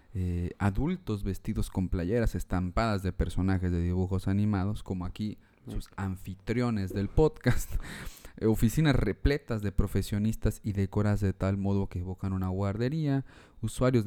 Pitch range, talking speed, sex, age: 95-120 Hz, 135 wpm, male, 30-49